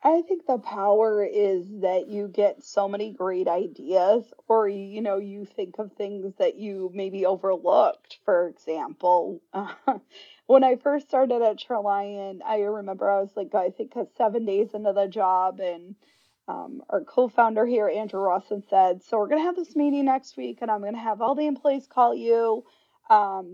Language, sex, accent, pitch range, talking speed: English, female, American, 200-260 Hz, 185 wpm